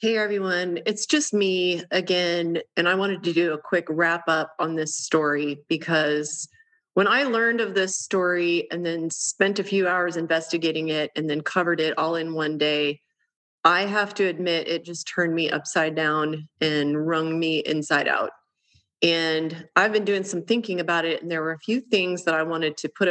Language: English